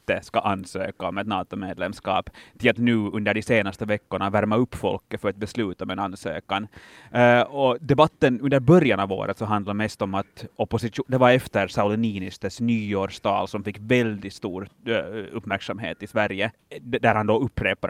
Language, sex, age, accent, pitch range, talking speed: Swedish, male, 30-49, Finnish, 100-120 Hz, 165 wpm